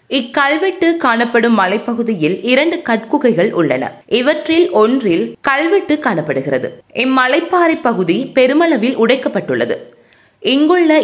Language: Tamil